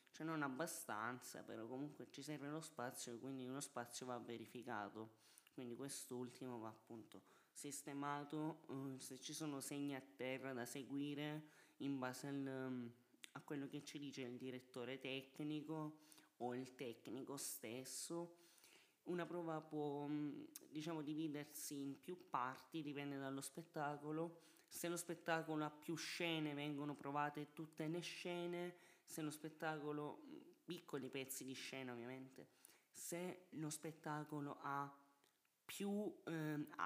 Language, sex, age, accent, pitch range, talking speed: Italian, male, 20-39, native, 135-160 Hz, 125 wpm